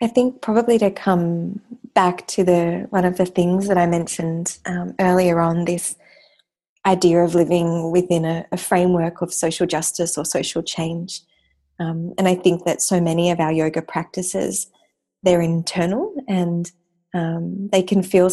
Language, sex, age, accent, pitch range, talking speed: English, female, 20-39, Australian, 165-185 Hz, 165 wpm